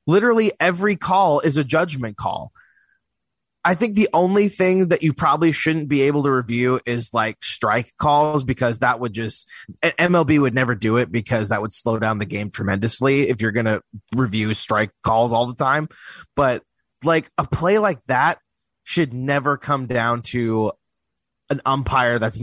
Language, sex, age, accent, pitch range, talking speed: English, male, 30-49, American, 110-150 Hz, 175 wpm